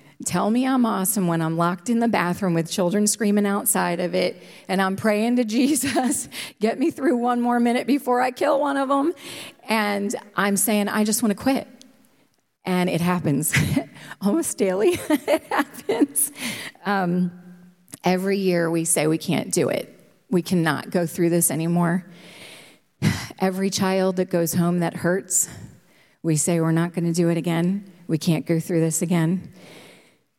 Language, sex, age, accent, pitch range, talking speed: English, female, 40-59, American, 170-210 Hz, 170 wpm